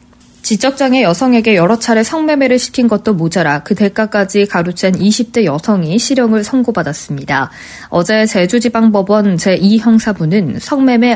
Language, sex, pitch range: Korean, female, 180-235 Hz